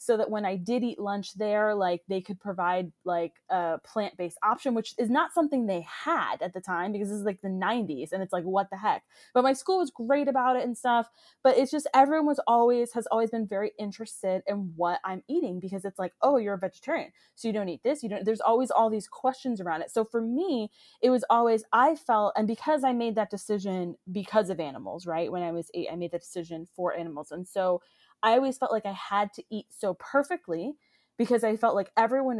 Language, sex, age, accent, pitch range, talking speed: English, female, 20-39, American, 185-235 Hz, 235 wpm